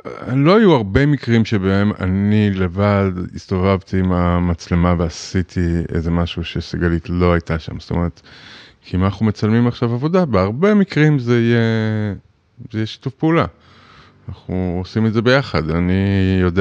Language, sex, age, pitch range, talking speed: Hebrew, male, 20-39, 90-110 Hz, 145 wpm